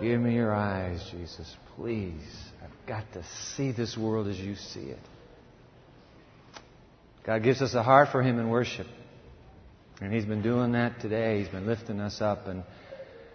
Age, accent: 50-69, American